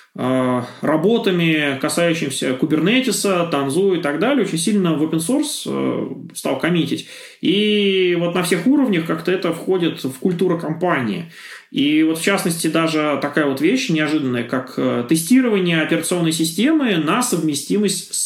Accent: native